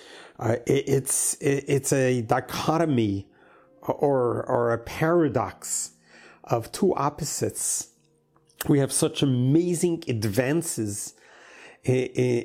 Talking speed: 95 wpm